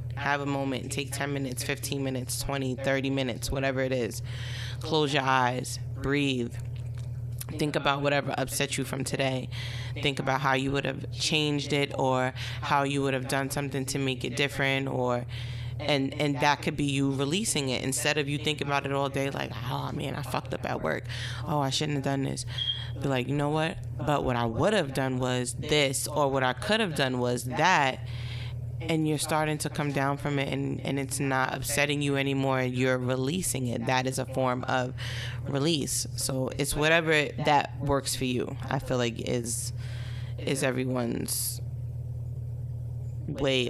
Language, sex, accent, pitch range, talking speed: English, female, American, 120-145 Hz, 185 wpm